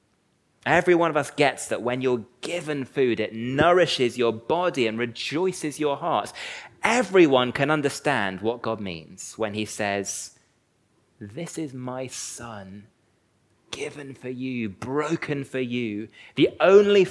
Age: 30-49